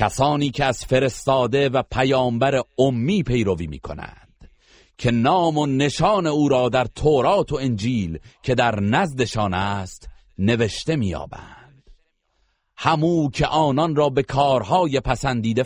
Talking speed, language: 130 wpm, Persian